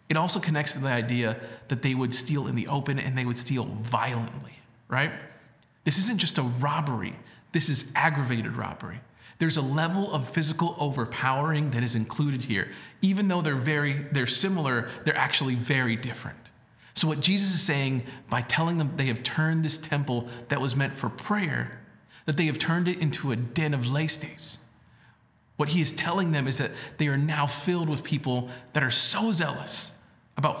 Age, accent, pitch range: 40-59, American, 130-165 Hz